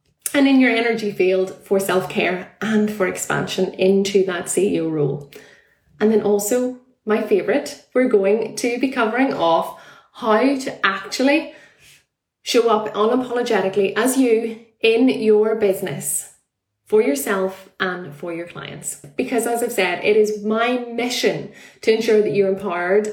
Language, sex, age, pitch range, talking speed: English, female, 20-39, 190-245 Hz, 145 wpm